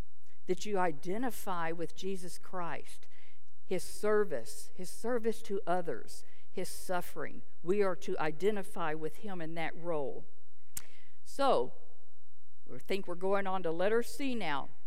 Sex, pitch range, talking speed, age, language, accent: female, 155-210 Hz, 135 wpm, 50-69, English, American